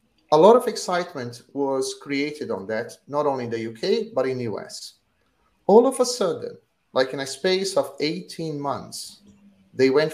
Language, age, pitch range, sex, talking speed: English, 30-49, 125-190 Hz, male, 180 wpm